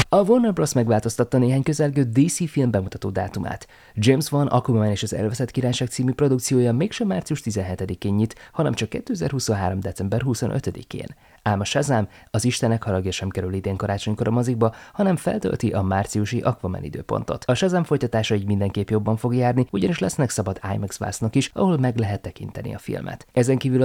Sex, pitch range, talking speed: male, 100-130 Hz, 170 wpm